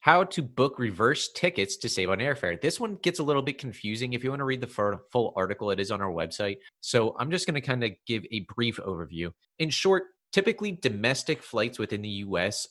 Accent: American